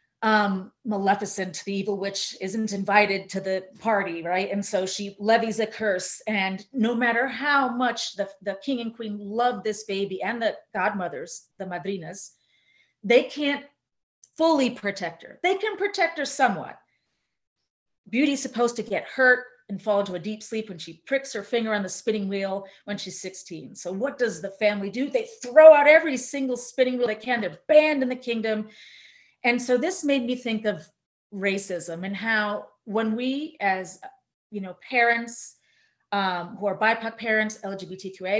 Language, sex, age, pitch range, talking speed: English, female, 30-49, 195-245 Hz, 170 wpm